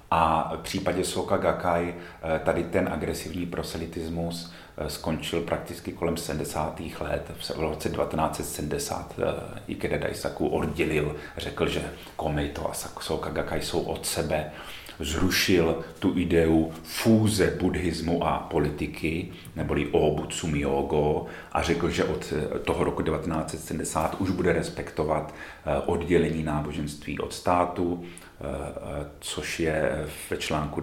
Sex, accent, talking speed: male, native, 110 wpm